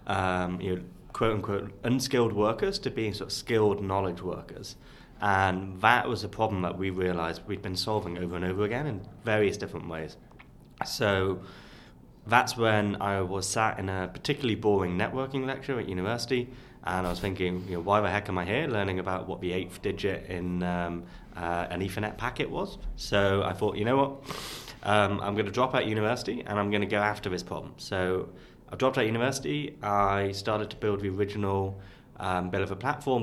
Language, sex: English, male